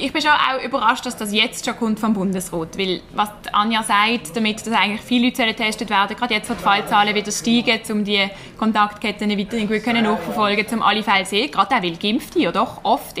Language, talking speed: German, 225 wpm